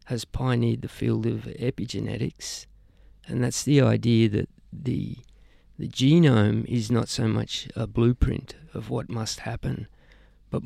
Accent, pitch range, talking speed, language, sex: Australian, 110-135 Hz, 140 wpm, English, male